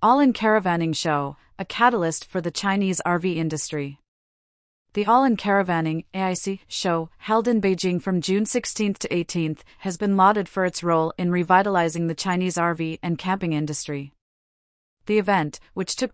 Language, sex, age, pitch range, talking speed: English, female, 30-49, 170-200 Hz, 150 wpm